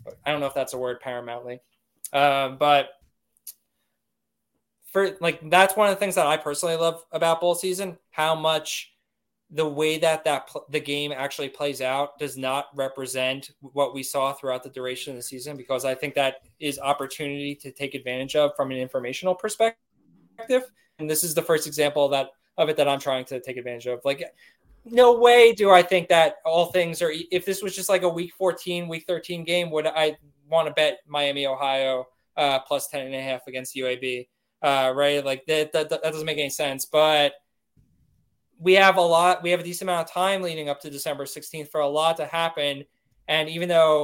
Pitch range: 135-170 Hz